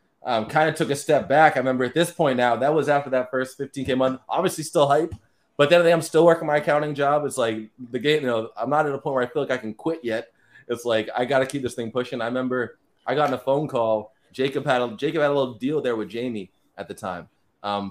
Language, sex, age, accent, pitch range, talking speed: English, male, 20-39, American, 110-140 Hz, 270 wpm